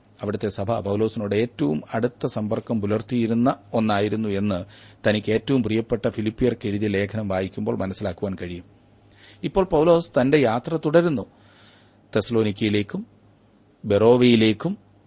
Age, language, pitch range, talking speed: 30-49, Malayalam, 100-125 Hz, 100 wpm